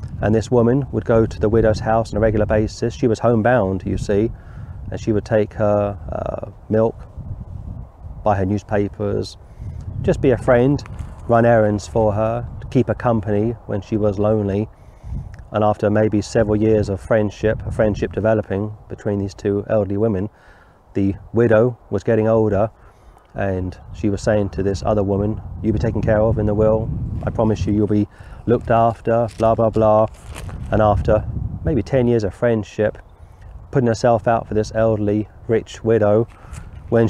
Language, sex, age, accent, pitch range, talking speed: English, male, 30-49, British, 100-115 Hz, 170 wpm